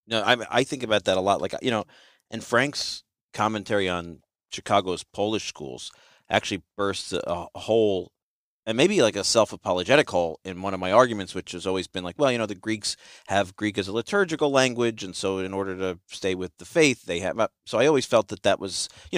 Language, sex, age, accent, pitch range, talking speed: English, male, 40-59, American, 85-105 Hz, 215 wpm